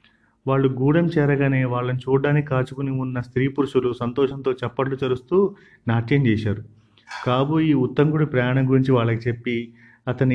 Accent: native